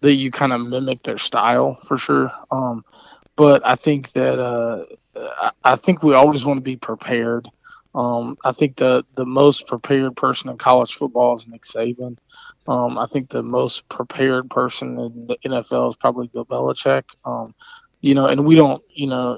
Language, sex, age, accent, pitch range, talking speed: English, male, 20-39, American, 120-135 Hz, 185 wpm